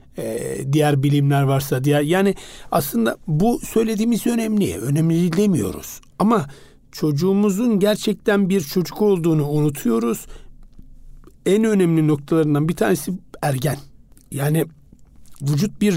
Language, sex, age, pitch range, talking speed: Turkish, male, 60-79, 150-180 Hz, 100 wpm